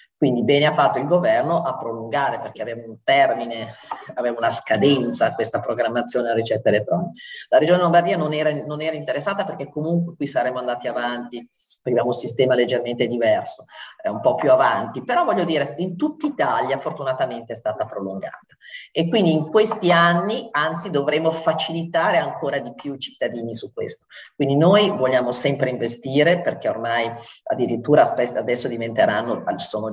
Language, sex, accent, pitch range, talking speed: Italian, male, native, 120-175 Hz, 160 wpm